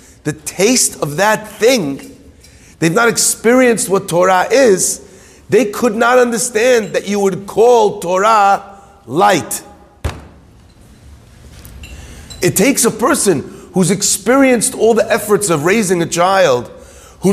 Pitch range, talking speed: 170-230 Hz, 120 wpm